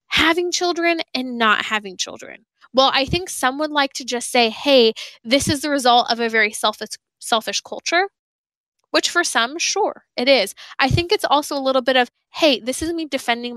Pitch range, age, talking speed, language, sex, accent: 225-285 Hz, 10-29, 200 wpm, English, female, American